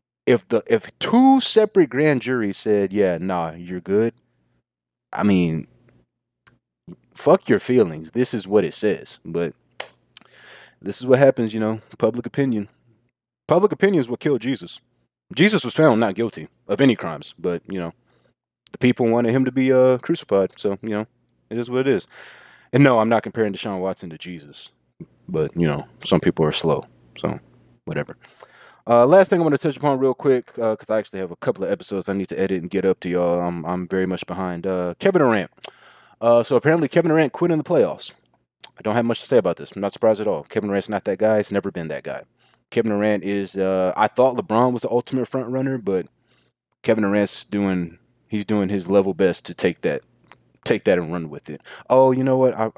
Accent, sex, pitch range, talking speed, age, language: American, male, 90-125 Hz, 210 wpm, 20-39, English